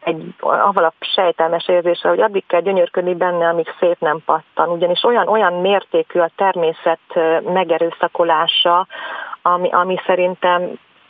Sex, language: female, Hungarian